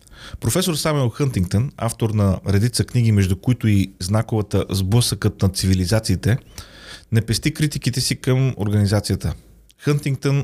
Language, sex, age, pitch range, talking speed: Bulgarian, male, 30-49, 100-125 Hz, 120 wpm